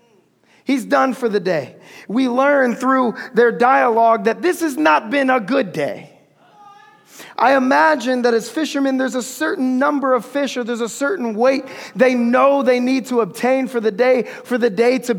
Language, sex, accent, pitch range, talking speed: English, male, American, 235-270 Hz, 185 wpm